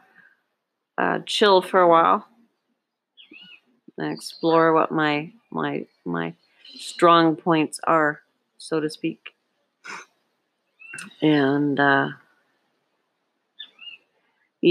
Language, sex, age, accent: English, female, 40-59, American